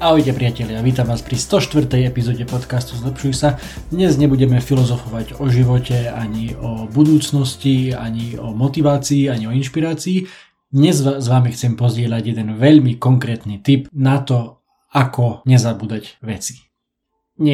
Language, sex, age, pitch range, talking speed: Slovak, male, 20-39, 115-140 Hz, 145 wpm